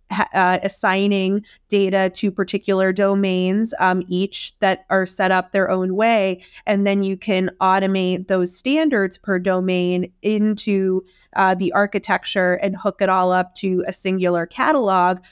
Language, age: English, 20-39